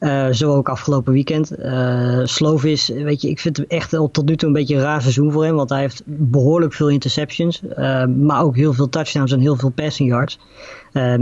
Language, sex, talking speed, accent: Dutch, female, 220 wpm, Dutch